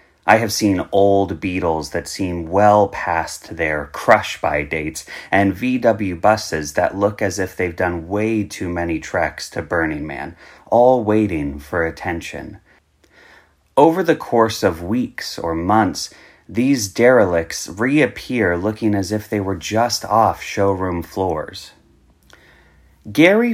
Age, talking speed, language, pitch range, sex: 30-49, 135 wpm, English, 85-120 Hz, male